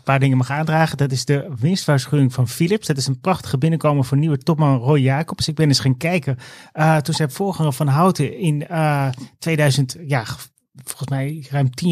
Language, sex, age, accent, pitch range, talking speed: Dutch, male, 30-49, Dutch, 135-155 Hz, 200 wpm